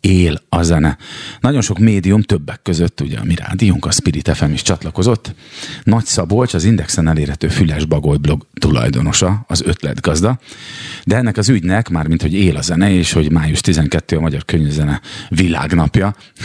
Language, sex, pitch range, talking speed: Hungarian, male, 80-105 Hz, 155 wpm